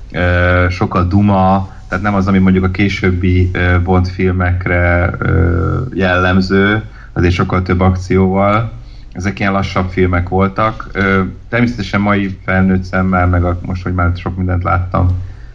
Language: Hungarian